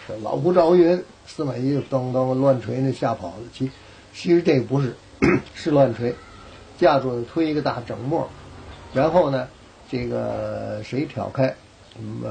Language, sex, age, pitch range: Chinese, male, 60-79, 105-135 Hz